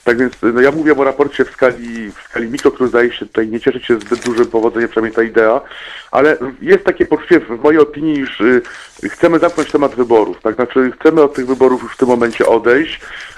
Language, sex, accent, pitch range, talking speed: Polish, male, native, 115-150 Hz, 215 wpm